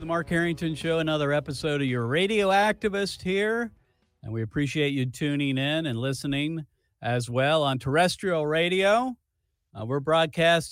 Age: 50-69